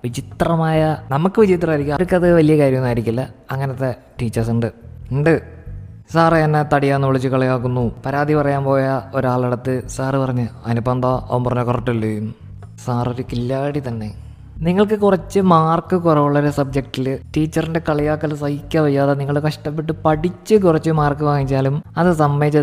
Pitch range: 125-165 Hz